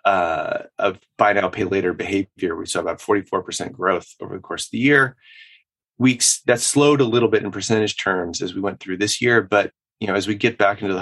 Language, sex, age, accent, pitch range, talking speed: English, male, 30-49, American, 105-130 Hz, 240 wpm